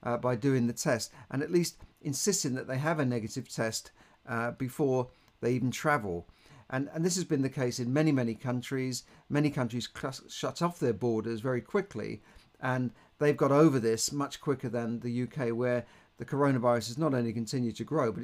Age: 50-69